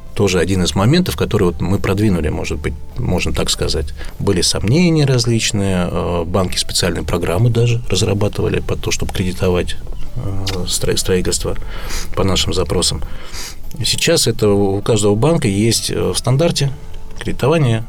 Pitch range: 85-110 Hz